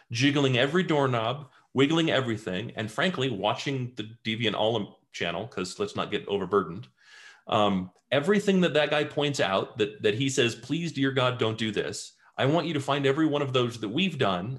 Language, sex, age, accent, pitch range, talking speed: English, male, 40-59, American, 120-160 Hz, 190 wpm